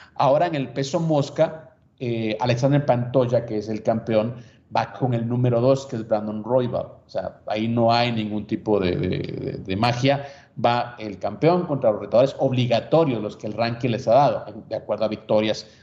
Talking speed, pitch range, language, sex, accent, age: 190 wpm, 110-135 Hz, Spanish, male, Mexican, 40-59